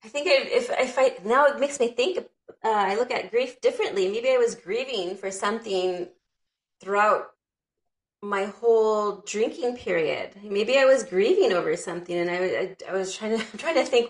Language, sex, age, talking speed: English, female, 30-49, 185 wpm